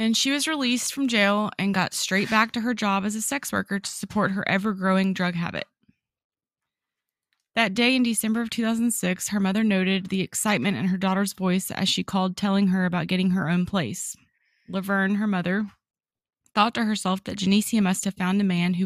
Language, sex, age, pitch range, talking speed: English, female, 20-39, 185-215 Hz, 195 wpm